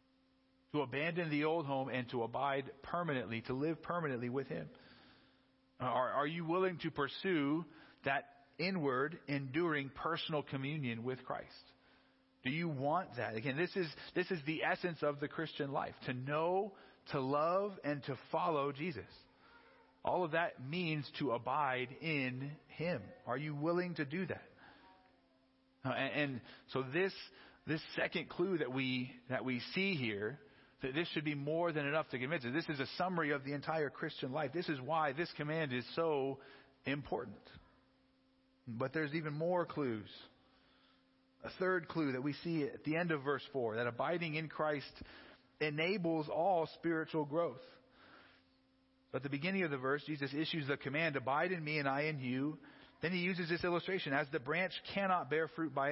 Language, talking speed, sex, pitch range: English, 175 wpm, male, 130-165 Hz